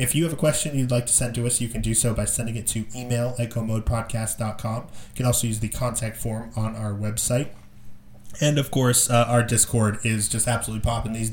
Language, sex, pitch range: English, male, 110-125 Hz